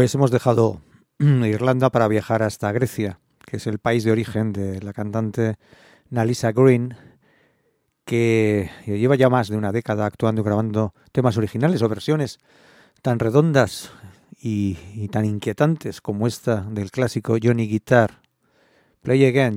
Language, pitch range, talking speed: English, 105-130 Hz, 145 wpm